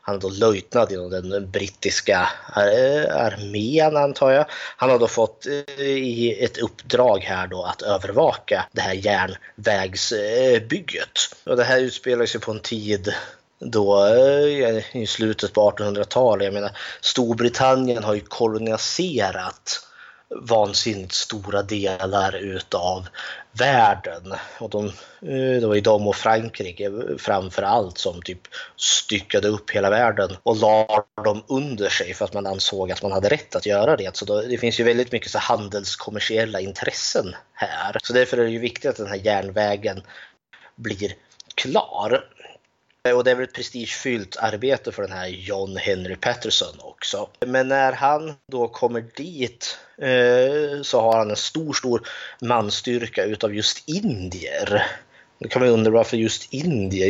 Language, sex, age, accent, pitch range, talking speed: Swedish, male, 30-49, native, 100-125 Hz, 145 wpm